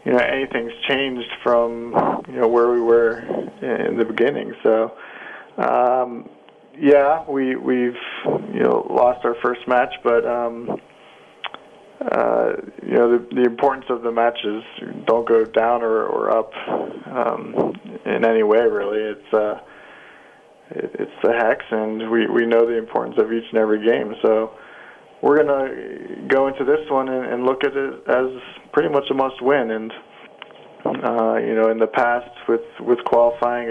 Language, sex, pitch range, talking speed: English, male, 115-130 Hz, 160 wpm